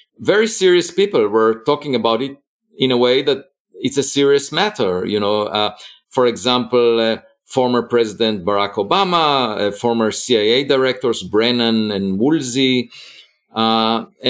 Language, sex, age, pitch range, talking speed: Bulgarian, male, 50-69, 110-165 Hz, 140 wpm